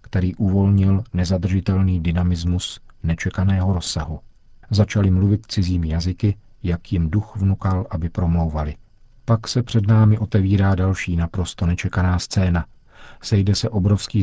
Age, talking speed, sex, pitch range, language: 50-69, 120 wpm, male, 90-105 Hz, Czech